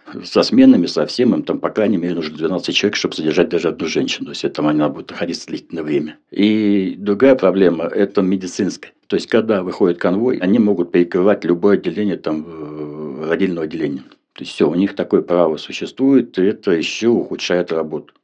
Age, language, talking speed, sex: 60-79, Russian, 180 wpm, male